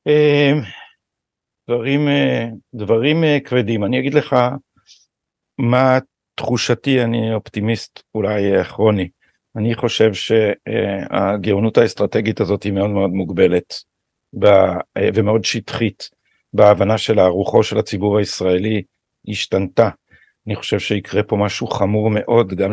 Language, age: Hebrew, 50-69